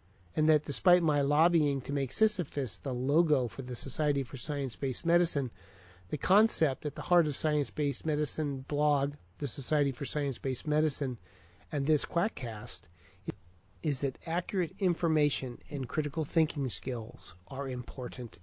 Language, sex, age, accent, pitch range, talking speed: English, male, 40-59, American, 95-150 Hz, 140 wpm